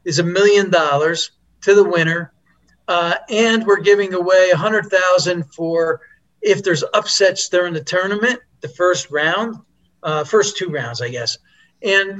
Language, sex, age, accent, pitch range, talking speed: English, male, 50-69, American, 160-205 Hz, 155 wpm